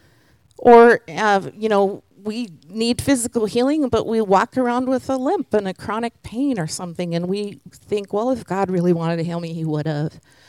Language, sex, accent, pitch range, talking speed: English, female, American, 160-230 Hz, 200 wpm